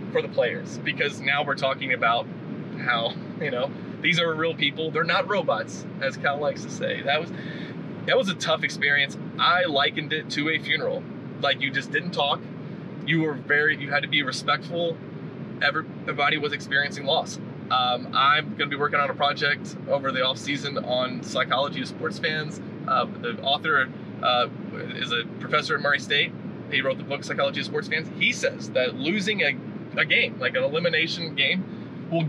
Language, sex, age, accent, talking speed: English, male, 20-39, American, 185 wpm